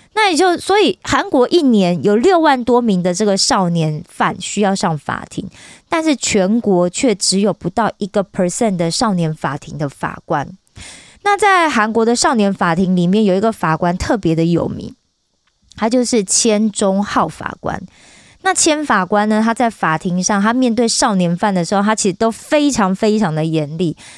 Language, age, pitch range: Korean, 20-39, 180-245 Hz